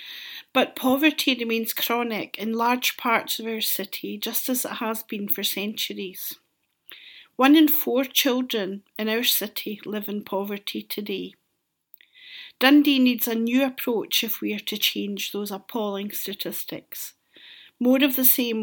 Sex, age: female, 50-69